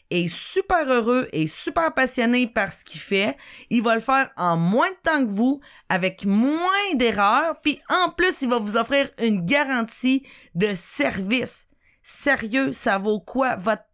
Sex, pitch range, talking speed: female, 210-275 Hz, 170 wpm